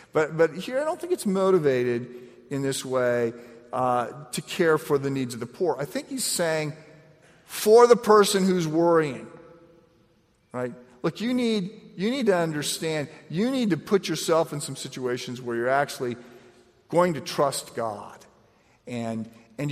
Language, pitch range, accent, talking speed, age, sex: English, 125-170 Hz, American, 165 wpm, 50-69, male